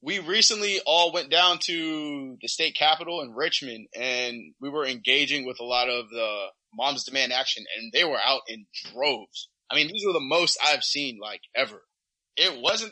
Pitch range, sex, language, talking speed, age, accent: 125-155 Hz, male, English, 190 wpm, 20-39, American